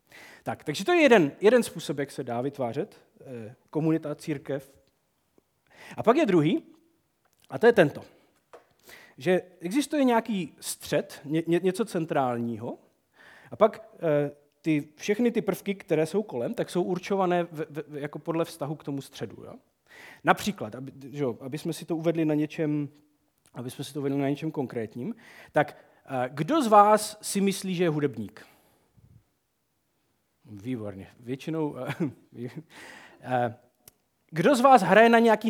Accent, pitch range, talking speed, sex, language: native, 130-190 Hz, 120 wpm, male, Czech